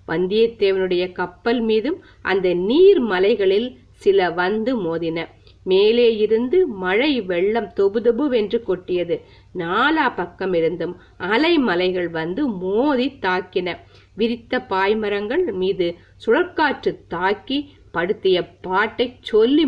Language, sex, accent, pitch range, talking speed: Tamil, female, native, 180-250 Hz, 65 wpm